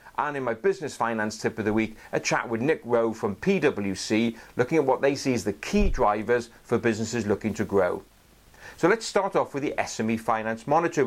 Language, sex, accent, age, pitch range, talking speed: English, male, British, 40-59, 115-155 Hz, 210 wpm